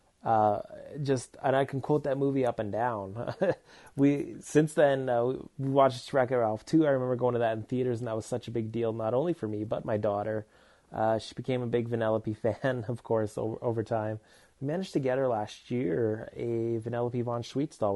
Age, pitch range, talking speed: 20-39, 110-135 Hz, 215 wpm